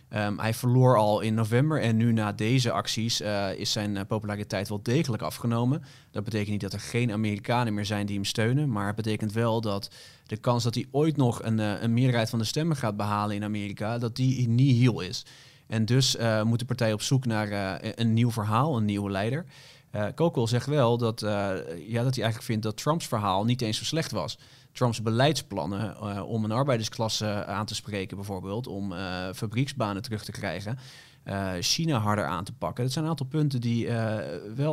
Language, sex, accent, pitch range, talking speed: Dutch, male, Dutch, 105-130 Hz, 205 wpm